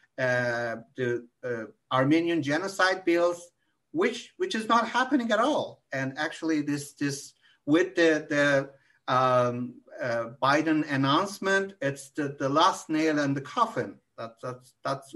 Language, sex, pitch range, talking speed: Turkish, male, 135-175 Hz, 140 wpm